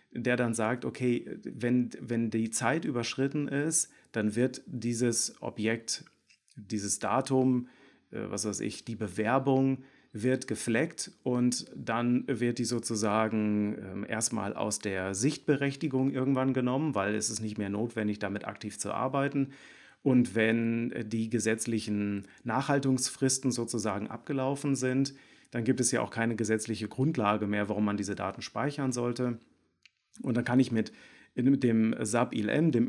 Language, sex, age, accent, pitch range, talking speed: German, male, 40-59, German, 110-130 Hz, 140 wpm